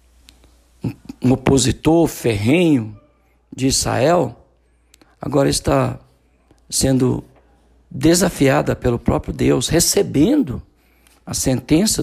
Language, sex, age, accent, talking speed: Portuguese, male, 60-79, Brazilian, 75 wpm